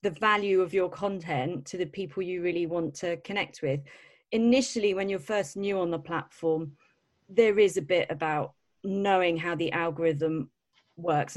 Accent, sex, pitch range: British, female, 155-195 Hz